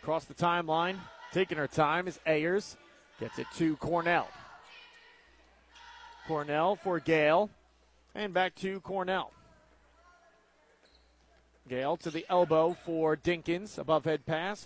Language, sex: English, male